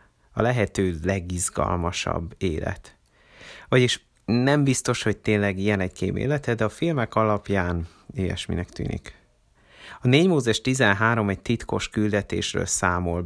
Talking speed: 120 wpm